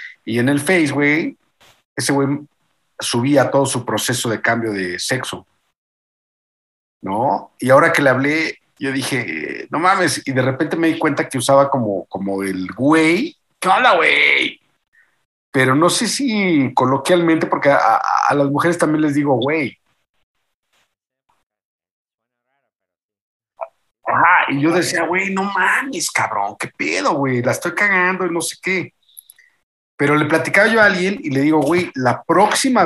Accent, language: Mexican, Spanish